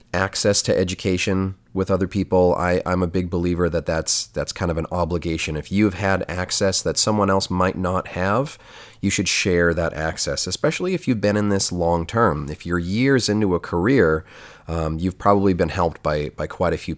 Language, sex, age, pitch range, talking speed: English, male, 30-49, 80-105 Hz, 200 wpm